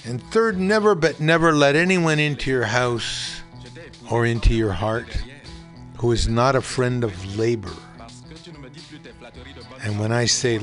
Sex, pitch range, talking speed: male, 120-135 Hz, 140 wpm